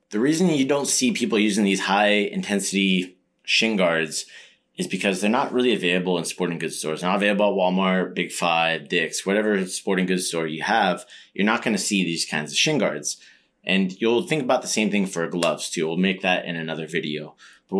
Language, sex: English, male